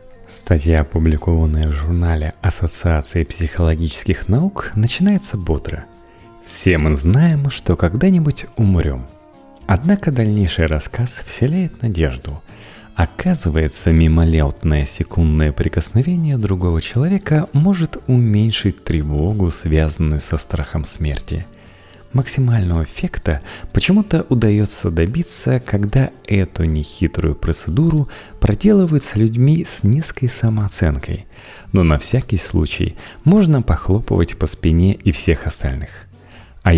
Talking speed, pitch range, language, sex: 100 wpm, 80-115 Hz, Russian, male